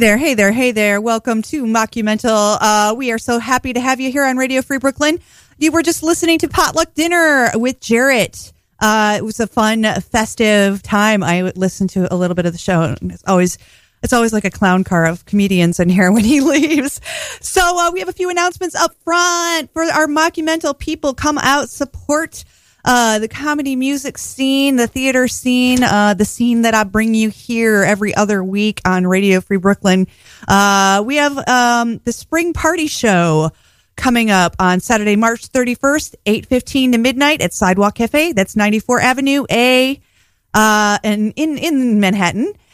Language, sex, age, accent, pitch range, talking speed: English, female, 30-49, American, 210-280 Hz, 185 wpm